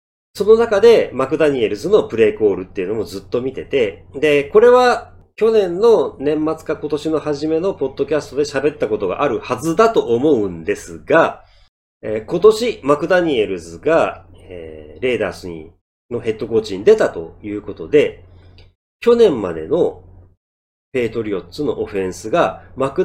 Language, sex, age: Japanese, male, 40-59